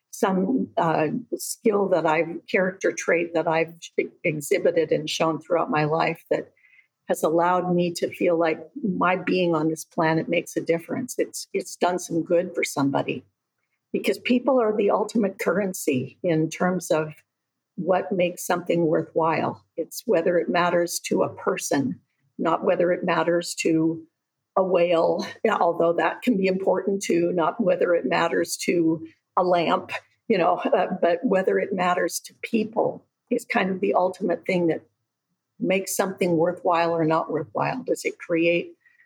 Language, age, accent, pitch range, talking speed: English, 50-69, American, 165-205 Hz, 155 wpm